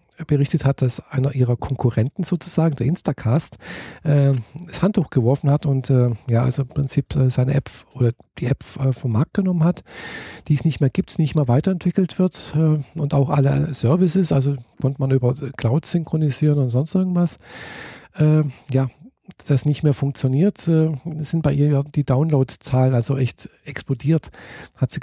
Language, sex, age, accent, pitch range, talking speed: German, male, 50-69, German, 135-160 Hz, 155 wpm